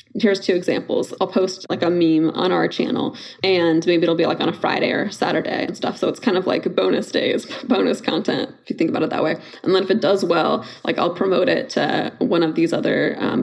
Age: 20-39